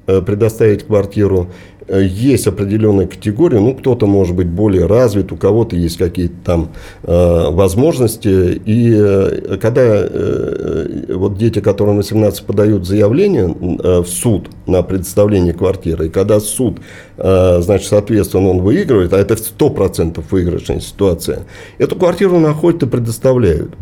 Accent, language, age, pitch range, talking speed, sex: native, Russian, 50-69, 95-115 Hz, 135 wpm, male